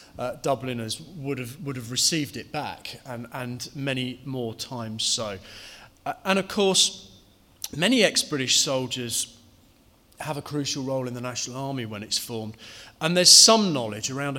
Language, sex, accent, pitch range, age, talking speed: English, male, British, 115-150 Hz, 40-59, 160 wpm